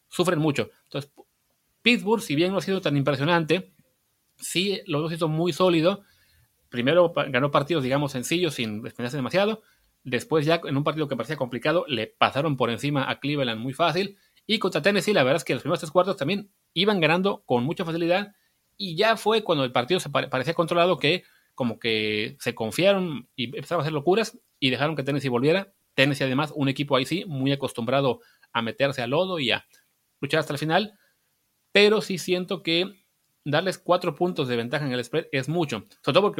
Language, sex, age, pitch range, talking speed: Spanish, male, 30-49, 135-180 Hz, 195 wpm